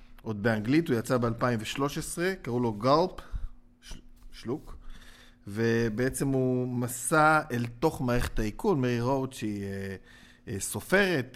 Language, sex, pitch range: Hebrew, male, 115-145 Hz